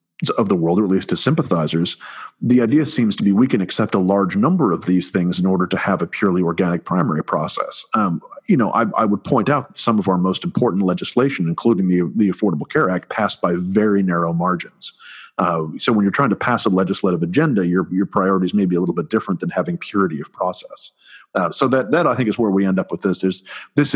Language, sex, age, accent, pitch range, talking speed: English, male, 40-59, American, 85-105 Hz, 240 wpm